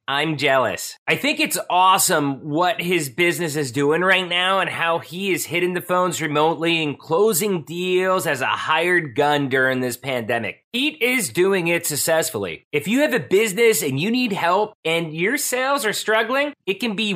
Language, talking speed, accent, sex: English, 185 wpm, American, male